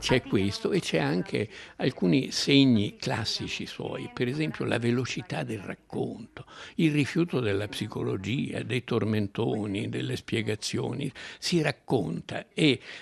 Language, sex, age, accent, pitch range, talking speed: Italian, male, 60-79, native, 100-125 Hz, 120 wpm